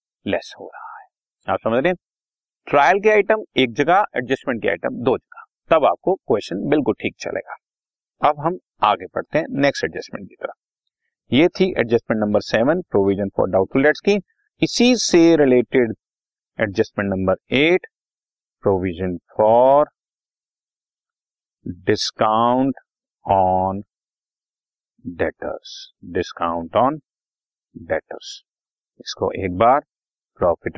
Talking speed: 115 wpm